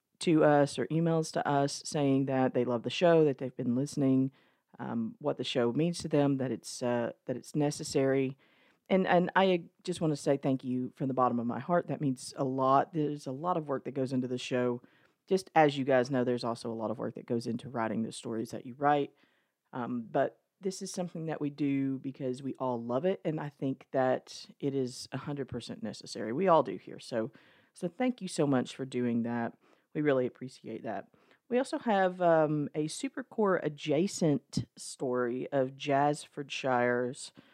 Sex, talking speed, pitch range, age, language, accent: female, 205 wpm, 130-170 Hz, 40-59, English, American